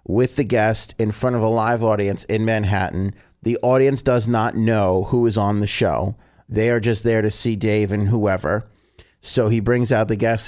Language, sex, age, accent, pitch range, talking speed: English, male, 40-59, American, 95-115 Hz, 205 wpm